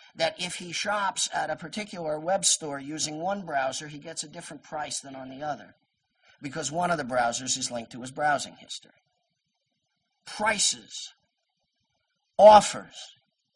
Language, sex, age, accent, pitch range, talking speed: English, male, 50-69, American, 140-180 Hz, 150 wpm